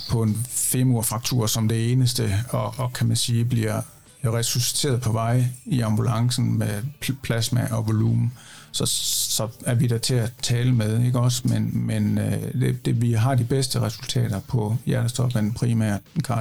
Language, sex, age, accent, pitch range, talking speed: Danish, male, 60-79, native, 115-130 Hz, 160 wpm